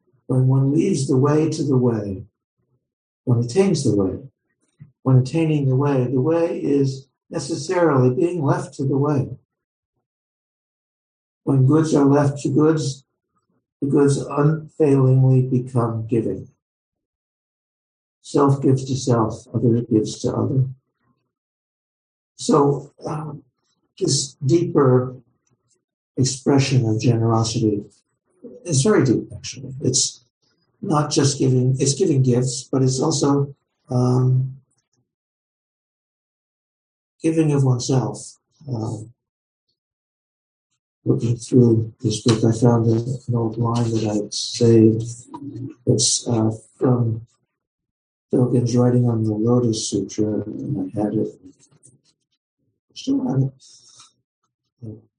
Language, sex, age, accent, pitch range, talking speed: English, male, 60-79, American, 115-140 Hz, 105 wpm